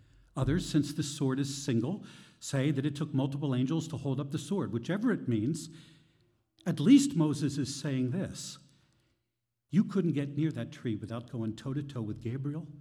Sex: male